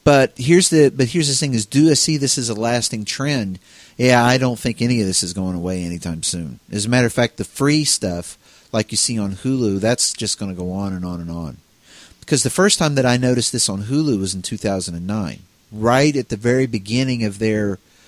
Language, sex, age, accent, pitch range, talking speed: English, male, 40-59, American, 95-130 Hz, 235 wpm